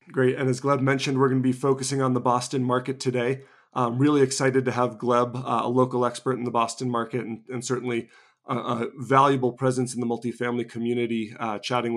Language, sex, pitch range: English, male, 120-130 Hz